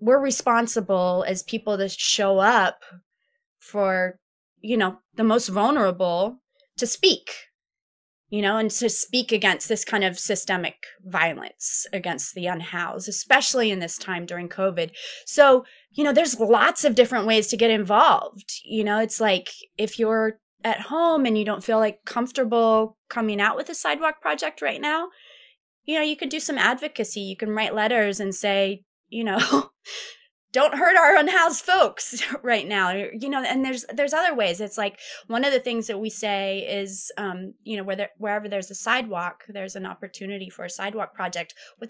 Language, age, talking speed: English, 20-39, 175 wpm